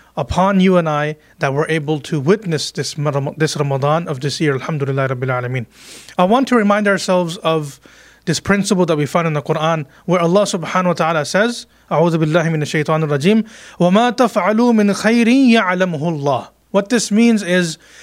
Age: 30-49